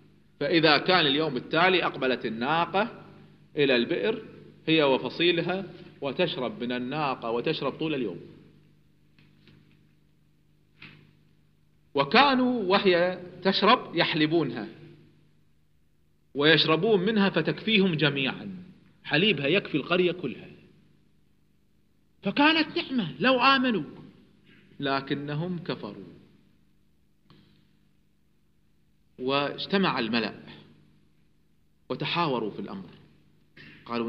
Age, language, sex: 40-59, Arabic, male